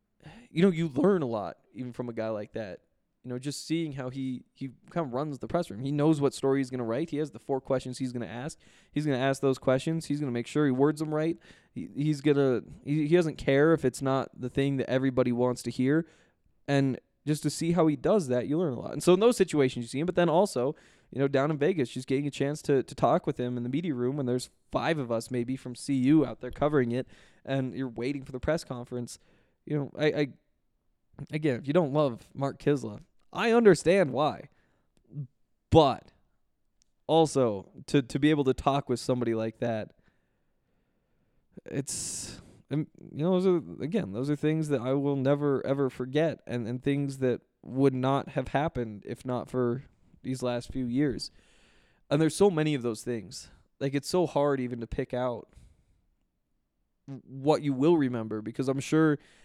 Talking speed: 210 wpm